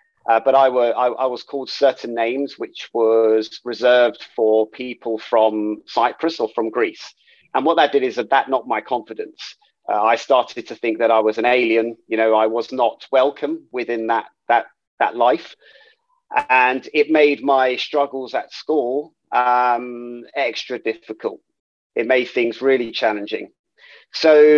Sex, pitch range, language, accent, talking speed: male, 115-145 Hz, English, British, 165 wpm